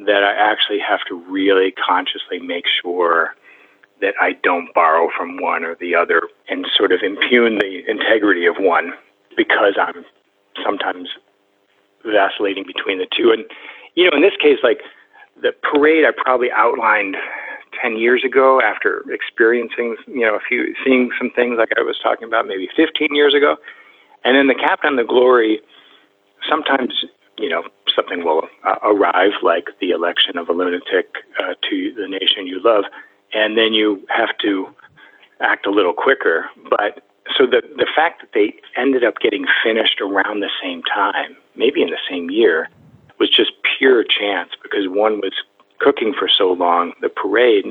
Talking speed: 170 wpm